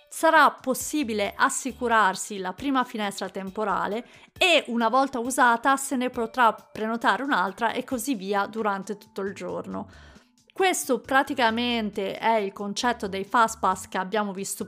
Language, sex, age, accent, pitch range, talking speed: Italian, female, 30-49, native, 205-265 Hz, 140 wpm